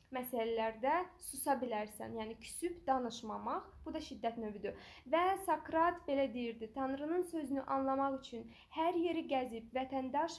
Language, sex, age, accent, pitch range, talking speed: English, female, 10-29, Turkish, 250-315 Hz, 125 wpm